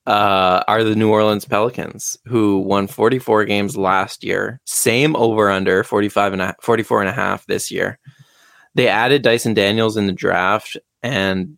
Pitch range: 95-115 Hz